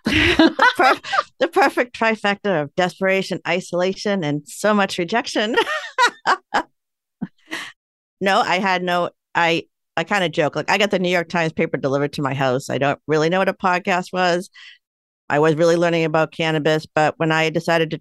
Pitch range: 145-175 Hz